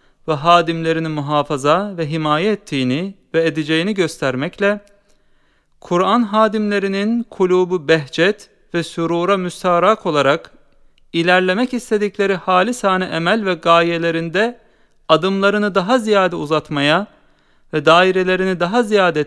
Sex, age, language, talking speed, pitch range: male, 40-59, Turkish, 95 wpm, 160-200 Hz